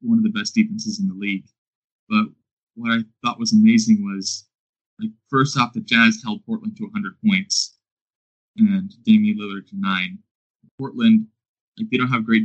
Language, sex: English, male